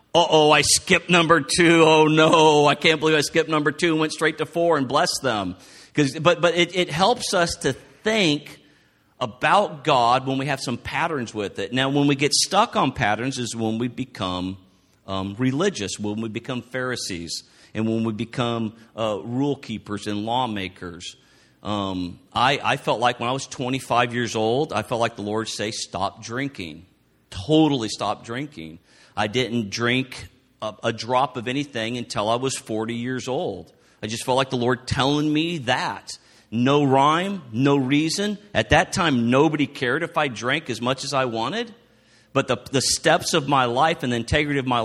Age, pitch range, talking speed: 50-69, 115-155 Hz, 185 wpm